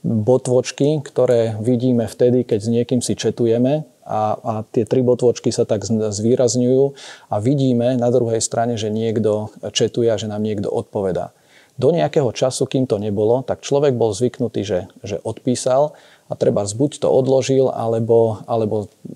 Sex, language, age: male, Slovak, 40-59